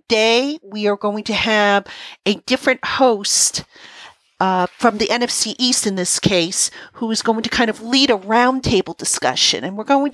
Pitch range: 200-235 Hz